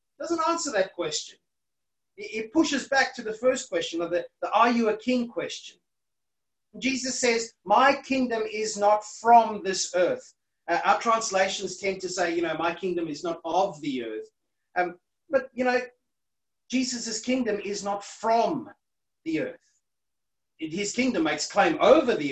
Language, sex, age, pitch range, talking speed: English, male, 30-49, 200-260 Hz, 160 wpm